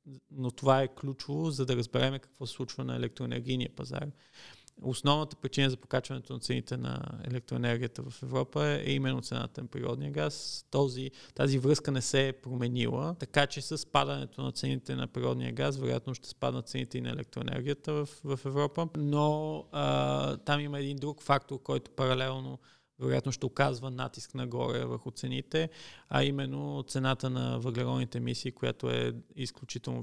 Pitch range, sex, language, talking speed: 115-140 Hz, male, Bulgarian, 160 wpm